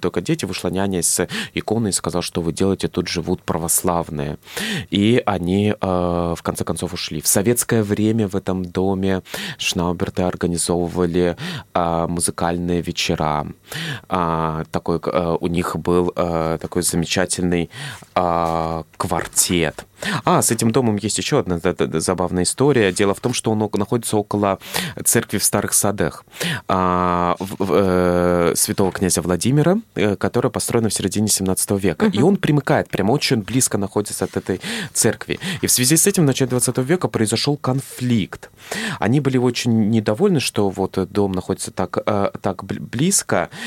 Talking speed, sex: 135 wpm, male